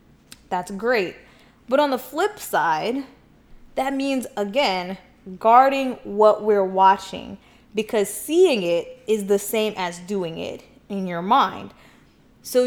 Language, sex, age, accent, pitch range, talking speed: English, female, 20-39, American, 205-270 Hz, 130 wpm